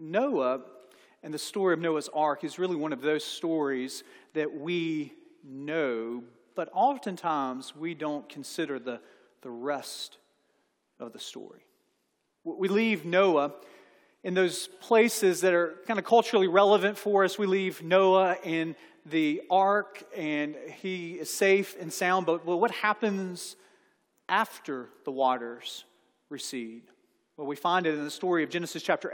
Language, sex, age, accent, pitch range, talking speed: English, male, 40-59, American, 160-195 Hz, 145 wpm